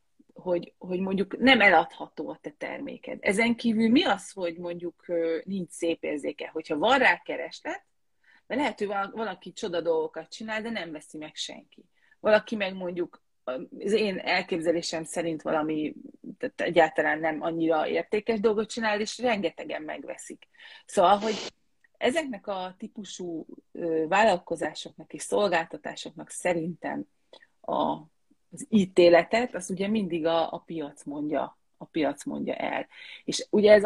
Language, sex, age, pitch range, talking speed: Hungarian, female, 30-49, 165-220 Hz, 135 wpm